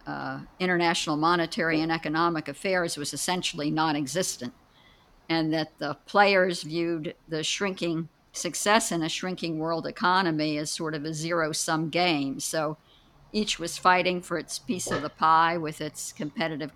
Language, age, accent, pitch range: English, 60-79, American, 150-180 Hz